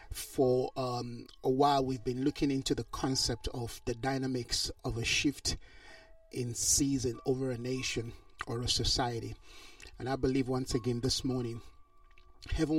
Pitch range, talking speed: 125-145 Hz, 150 wpm